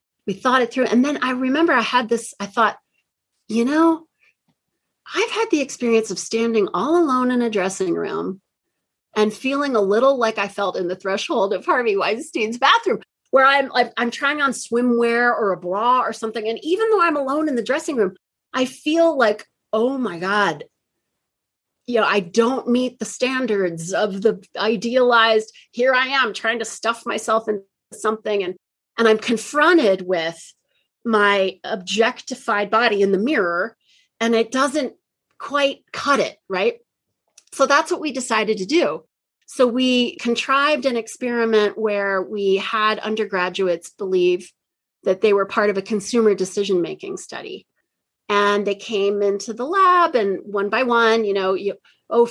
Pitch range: 205-270 Hz